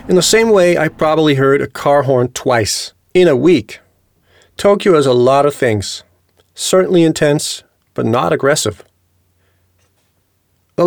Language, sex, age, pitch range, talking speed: English, male, 40-59, 110-160 Hz, 145 wpm